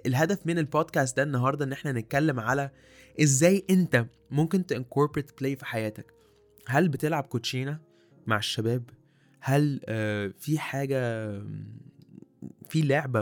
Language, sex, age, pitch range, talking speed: Arabic, male, 20-39, 120-145 Hz, 120 wpm